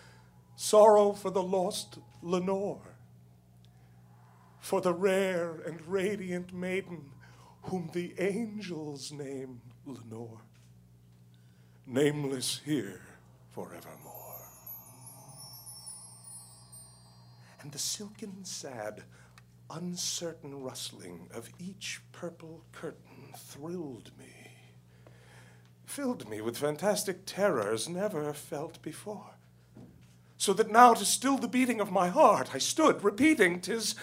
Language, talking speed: English, 95 wpm